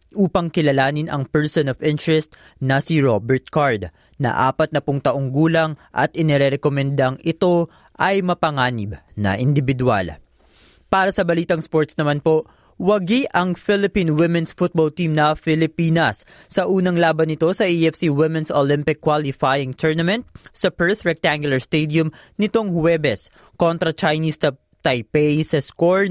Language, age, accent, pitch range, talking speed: Filipino, 20-39, native, 135-170 Hz, 135 wpm